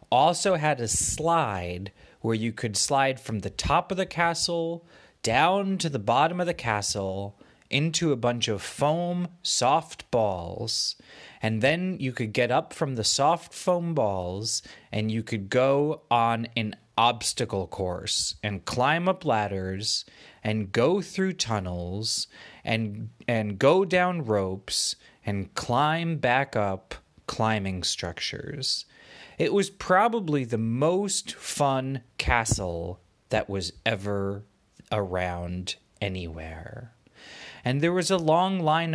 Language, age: English, 30-49